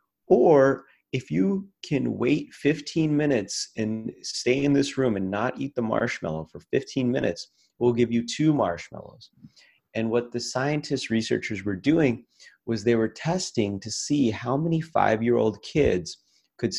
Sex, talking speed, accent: male, 155 wpm, American